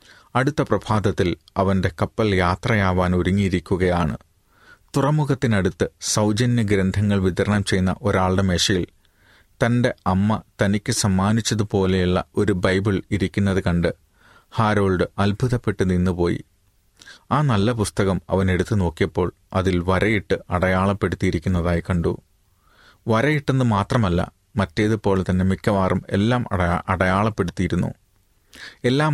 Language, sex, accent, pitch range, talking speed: Malayalam, male, native, 95-110 Hz, 85 wpm